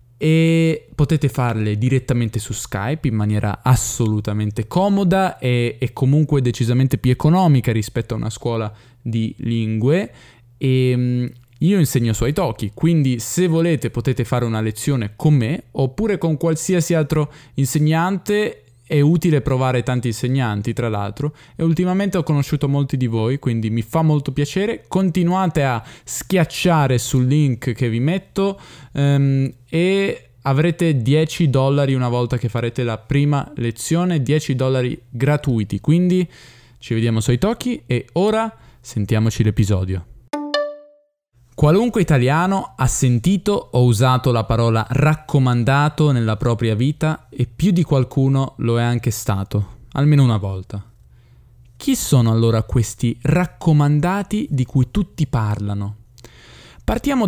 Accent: native